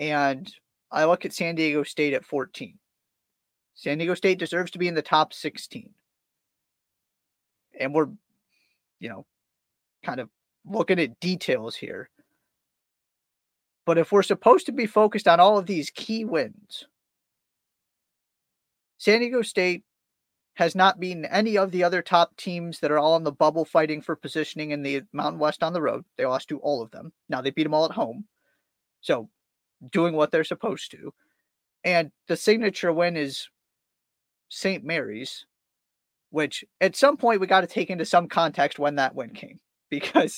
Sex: male